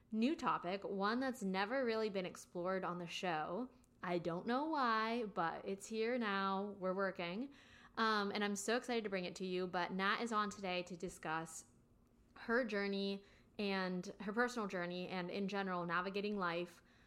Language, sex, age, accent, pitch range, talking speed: English, female, 20-39, American, 180-215 Hz, 170 wpm